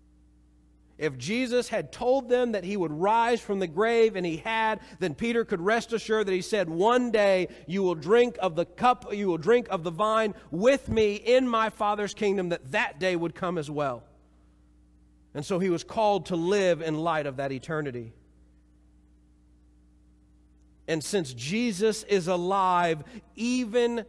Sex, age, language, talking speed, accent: male, 40-59, English, 170 wpm, American